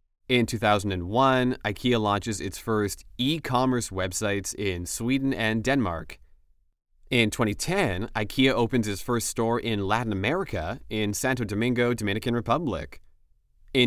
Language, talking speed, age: English, 120 wpm, 30-49